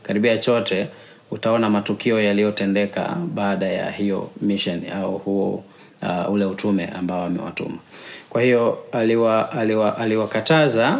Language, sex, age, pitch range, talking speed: Swahili, male, 30-49, 105-125 Hz, 115 wpm